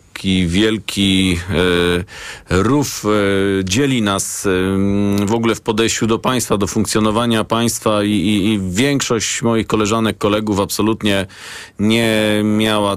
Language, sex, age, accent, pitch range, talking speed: Polish, male, 40-59, native, 100-110 Hz, 105 wpm